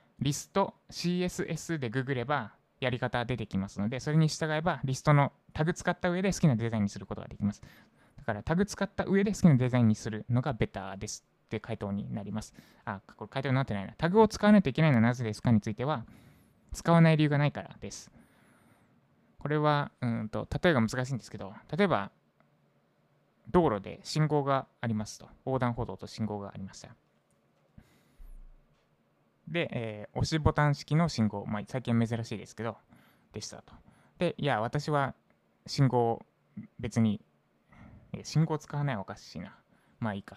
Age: 20-39